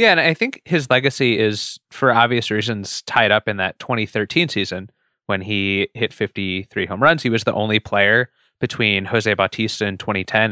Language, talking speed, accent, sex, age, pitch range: English, 185 wpm, American, male, 20-39, 100-115 Hz